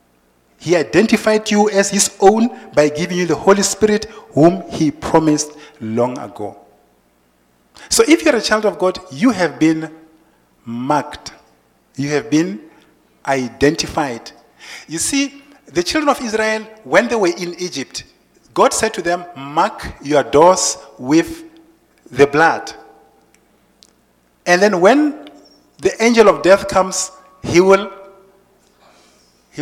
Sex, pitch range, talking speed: male, 155-240 Hz, 130 wpm